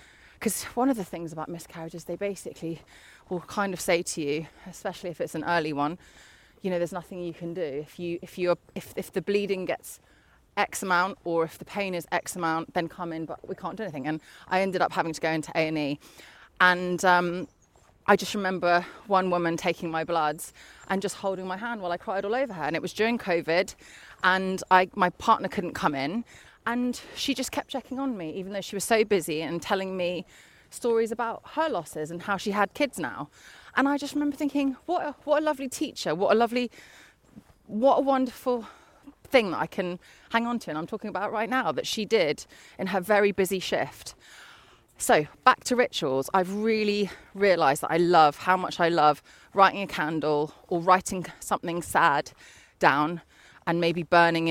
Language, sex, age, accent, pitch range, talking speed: English, female, 20-39, British, 165-210 Hz, 205 wpm